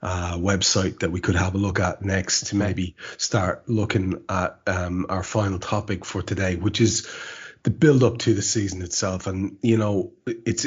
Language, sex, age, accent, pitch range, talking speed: English, male, 30-49, Irish, 90-110 Hz, 190 wpm